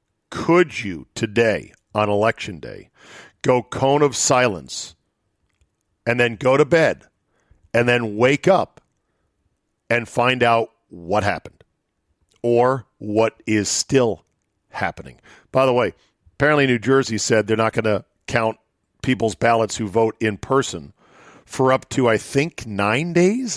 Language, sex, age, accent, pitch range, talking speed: English, male, 50-69, American, 110-140 Hz, 135 wpm